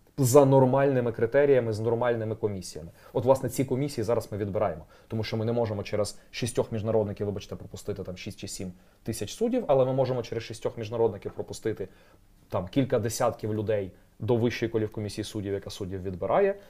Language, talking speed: Ukrainian, 175 wpm